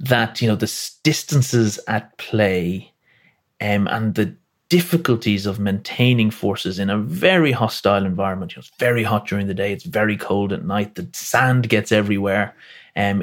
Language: English